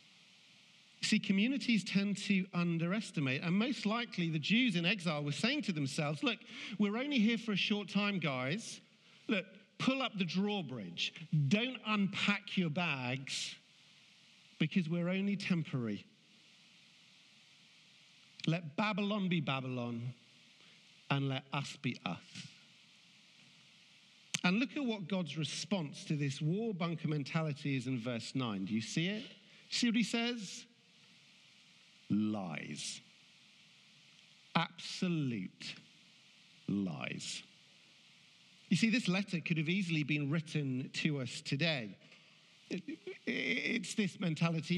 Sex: male